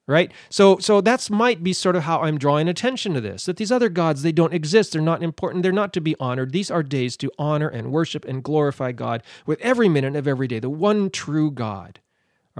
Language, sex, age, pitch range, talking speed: English, male, 40-59, 130-185 Hz, 240 wpm